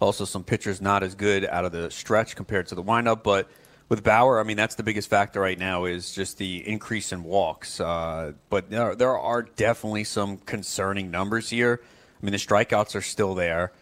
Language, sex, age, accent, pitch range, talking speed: English, male, 30-49, American, 95-110 Hz, 210 wpm